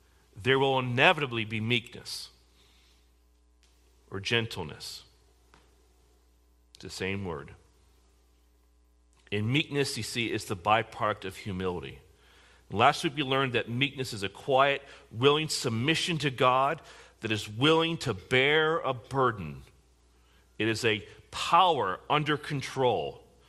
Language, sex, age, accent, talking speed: English, male, 40-59, American, 120 wpm